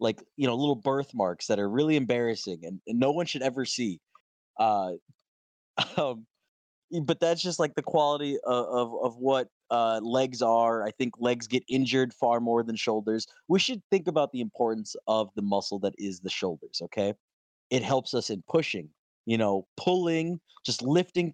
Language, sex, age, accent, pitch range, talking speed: English, male, 20-39, American, 105-135 Hz, 180 wpm